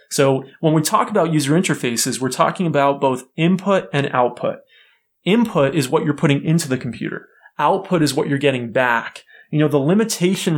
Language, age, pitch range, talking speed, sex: English, 30-49, 130-165 Hz, 180 wpm, male